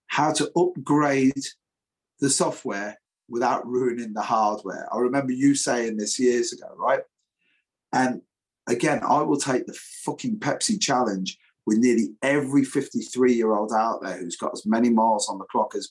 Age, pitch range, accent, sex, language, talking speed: 30-49, 120-150 Hz, British, male, English, 155 wpm